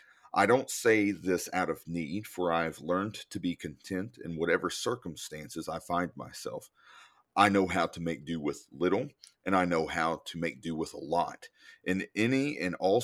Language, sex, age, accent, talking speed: English, male, 40-59, American, 190 wpm